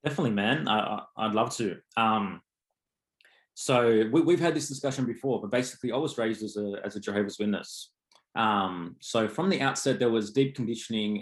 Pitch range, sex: 105-120 Hz, male